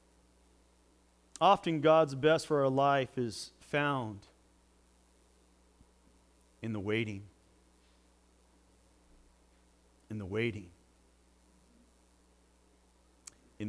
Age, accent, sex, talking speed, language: 50-69, American, male, 65 wpm, English